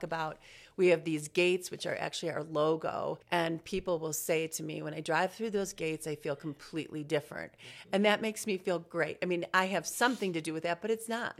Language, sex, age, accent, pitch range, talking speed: English, female, 40-59, American, 155-180 Hz, 230 wpm